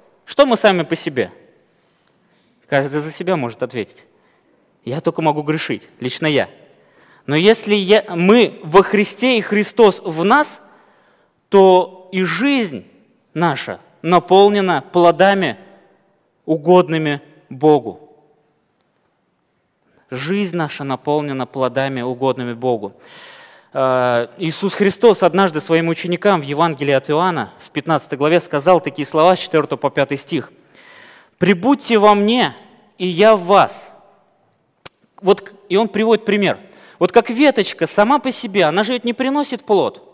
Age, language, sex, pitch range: 20-39, Russian, male, 155-215 Hz